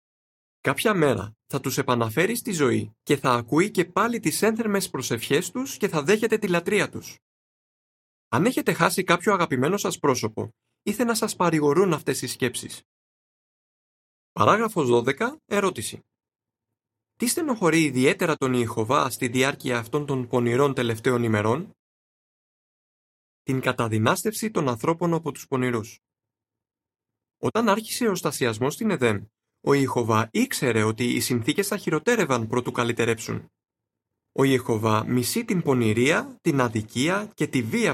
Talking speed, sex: 135 wpm, male